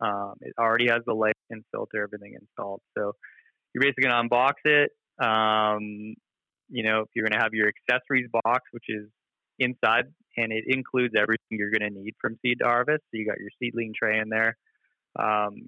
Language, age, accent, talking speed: English, 20-39, American, 200 wpm